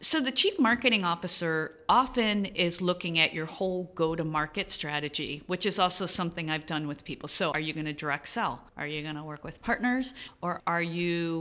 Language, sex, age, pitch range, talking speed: English, female, 40-59, 160-210 Hz, 200 wpm